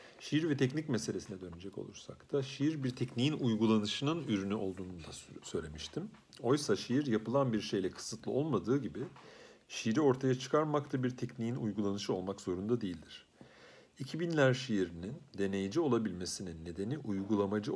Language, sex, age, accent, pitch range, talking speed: Turkish, male, 50-69, native, 95-125 Hz, 130 wpm